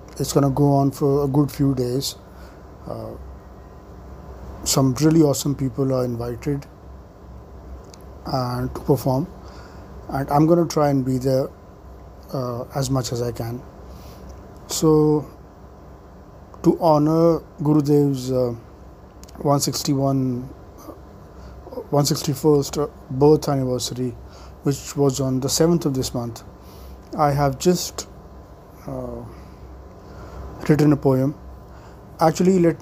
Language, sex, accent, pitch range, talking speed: English, male, Indian, 115-150 Hz, 115 wpm